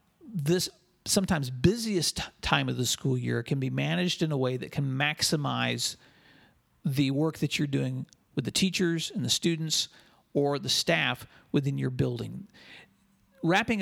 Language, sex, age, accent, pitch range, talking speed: English, male, 40-59, American, 130-170 Hz, 150 wpm